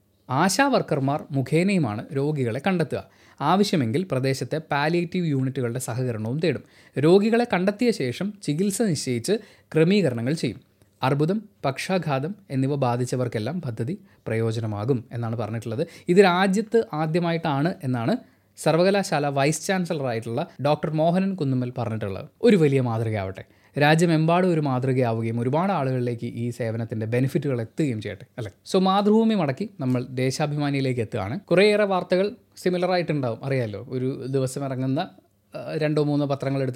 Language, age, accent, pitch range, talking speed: Malayalam, 20-39, native, 125-185 Hz, 110 wpm